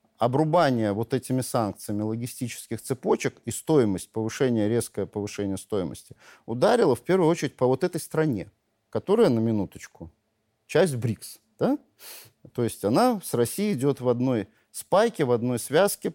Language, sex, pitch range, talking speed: Russian, male, 110-135 Hz, 135 wpm